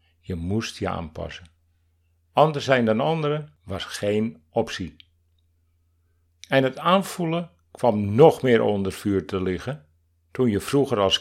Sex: male